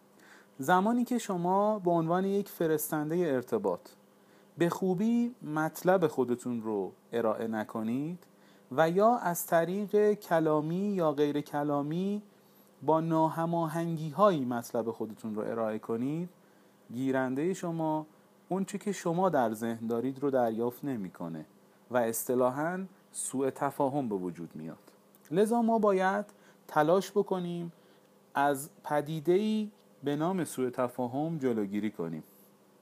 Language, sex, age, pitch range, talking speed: Persian, male, 40-59, 130-185 Hz, 115 wpm